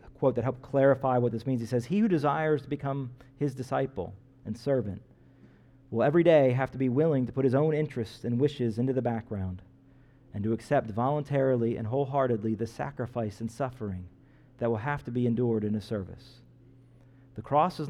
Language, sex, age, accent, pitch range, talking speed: English, male, 40-59, American, 115-135 Hz, 190 wpm